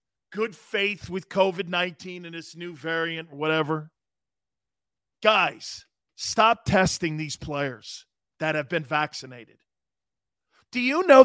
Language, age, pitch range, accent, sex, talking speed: English, 40-59, 140-225 Hz, American, male, 110 wpm